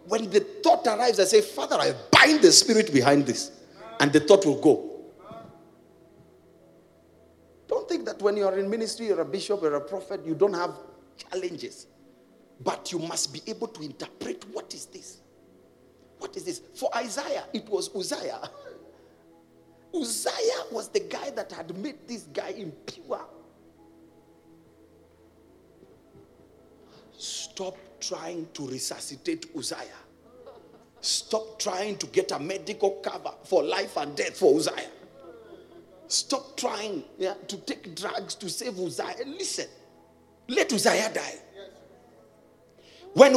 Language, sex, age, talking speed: English, male, 50-69, 135 wpm